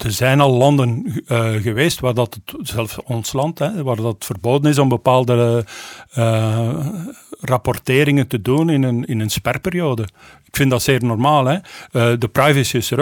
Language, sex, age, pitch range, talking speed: Dutch, male, 50-69, 120-145 Hz, 175 wpm